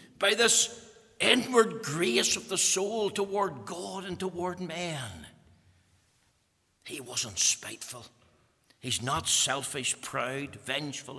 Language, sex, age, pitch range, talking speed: English, male, 60-79, 120-195 Hz, 105 wpm